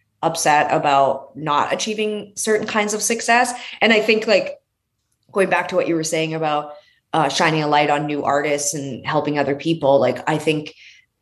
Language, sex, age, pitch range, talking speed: English, female, 30-49, 150-195 Hz, 180 wpm